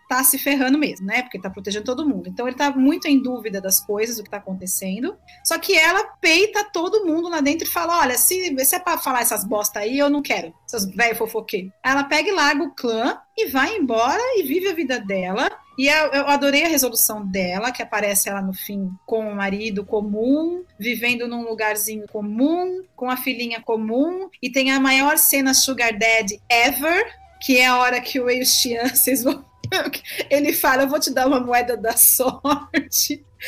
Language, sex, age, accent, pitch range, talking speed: Portuguese, female, 30-49, Brazilian, 230-315 Hz, 205 wpm